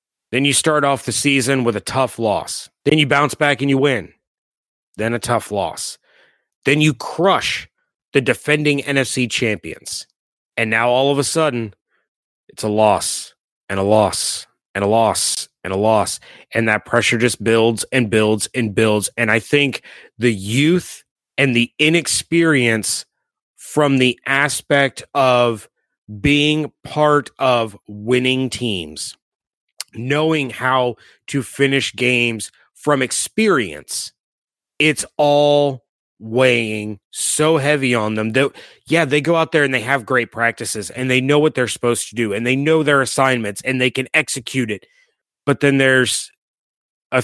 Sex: male